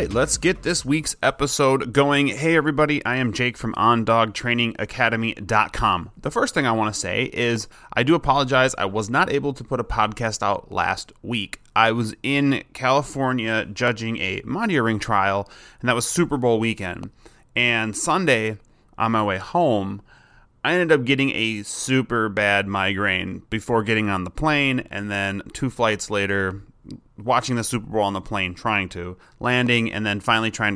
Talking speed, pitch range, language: 175 wpm, 100-125 Hz, English